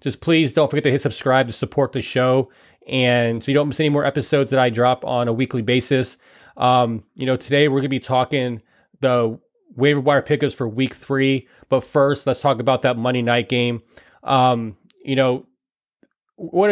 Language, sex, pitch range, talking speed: English, male, 120-140 Hz, 195 wpm